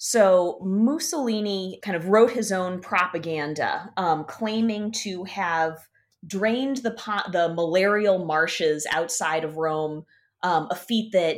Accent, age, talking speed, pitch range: American, 20-39, 130 wpm, 155-195 Hz